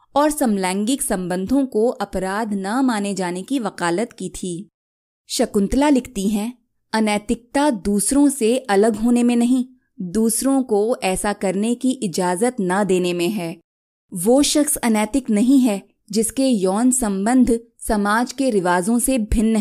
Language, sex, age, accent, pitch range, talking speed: Hindi, female, 20-39, native, 195-255 Hz, 140 wpm